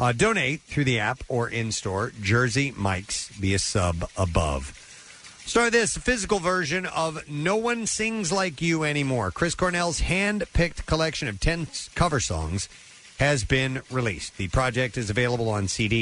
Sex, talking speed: male, 155 wpm